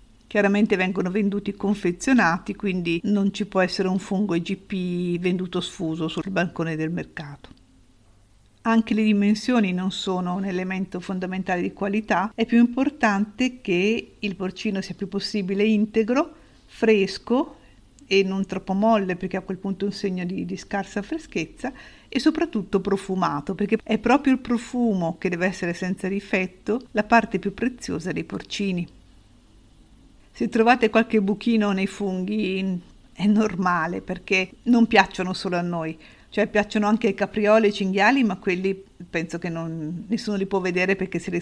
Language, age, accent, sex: Italian, 50-69, native, female